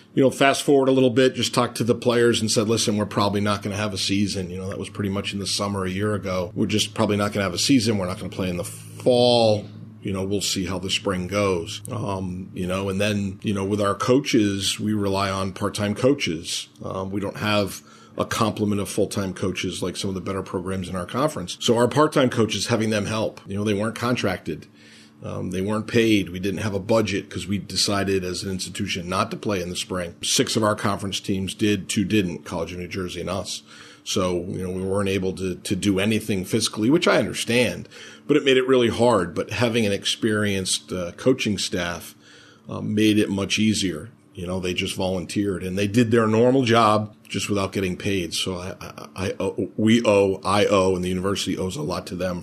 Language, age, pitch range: English, 40-59, 95-110 Hz